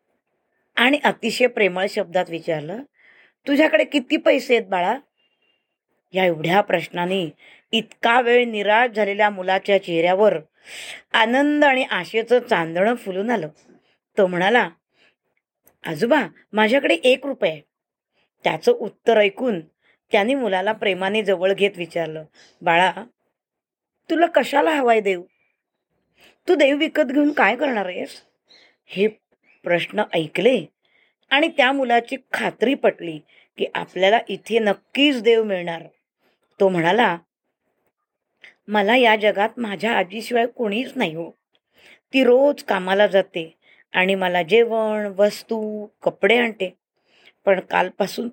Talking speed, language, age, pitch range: 110 wpm, Marathi, 20-39, 190-245 Hz